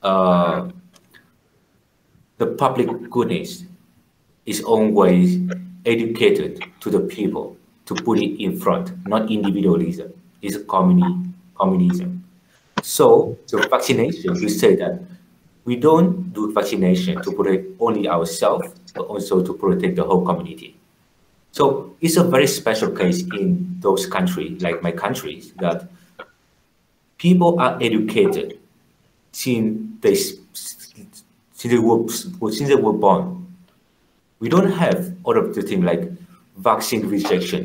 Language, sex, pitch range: Chinese, male, 120-185 Hz